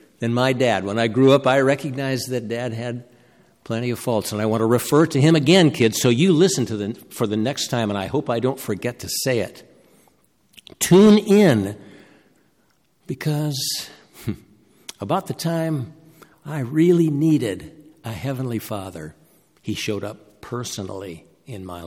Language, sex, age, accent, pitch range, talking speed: English, male, 60-79, American, 110-155 Hz, 165 wpm